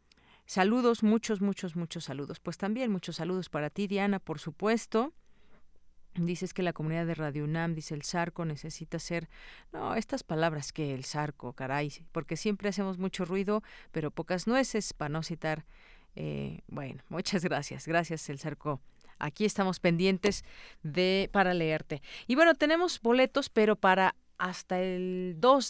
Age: 40-59